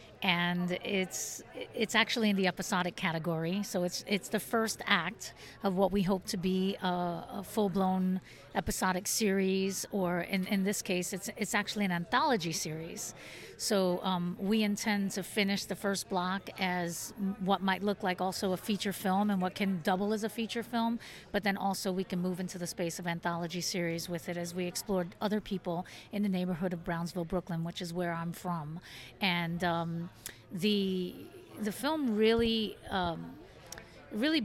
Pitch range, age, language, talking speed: 175-205 Hz, 40-59, English, 175 wpm